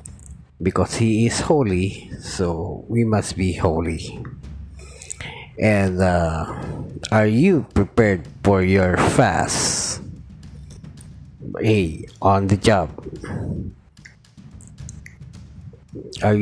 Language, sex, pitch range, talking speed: Filipino, male, 85-105 Hz, 80 wpm